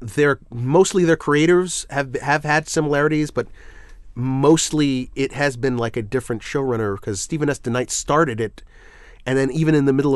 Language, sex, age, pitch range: English, male, 30-49, 115-150 Hz